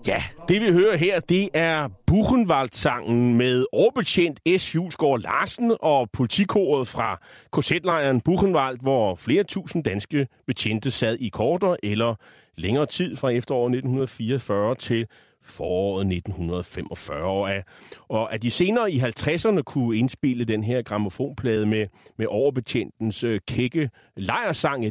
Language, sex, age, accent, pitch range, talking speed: Danish, male, 30-49, native, 110-150 Hz, 125 wpm